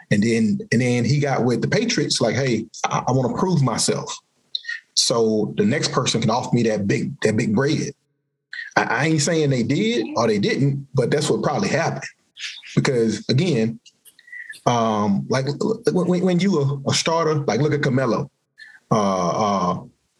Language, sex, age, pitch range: English, male, 30-49, 130-160 Hz